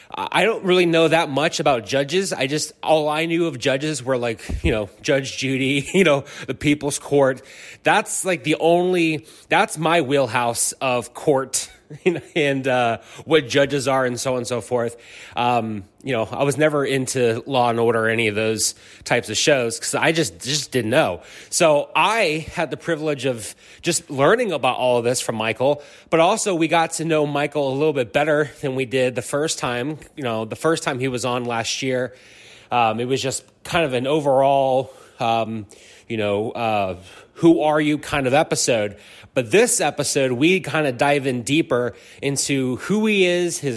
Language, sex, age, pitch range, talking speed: English, male, 30-49, 120-155 Hz, 195 wpm